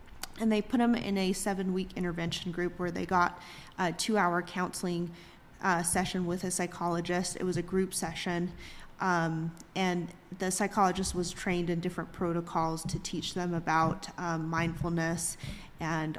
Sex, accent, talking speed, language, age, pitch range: female, American, 150 wpm, English, 30-49, 165-185 Hz